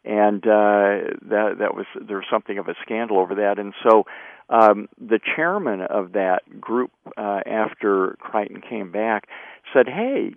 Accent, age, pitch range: American, 50-69, 105-130 Hz